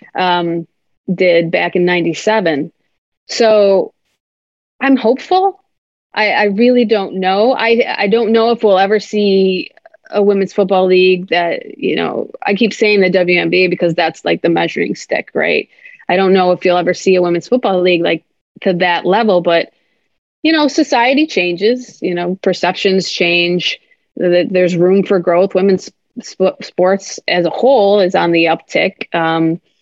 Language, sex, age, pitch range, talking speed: English, female, 30-49, 180-230 Hz, 155 wpm